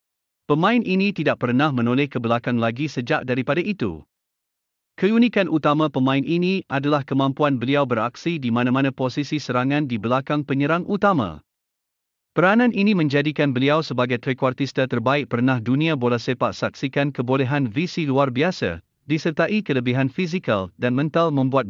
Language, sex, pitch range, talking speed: Malay, male, 125-160 Hz, 135 wpm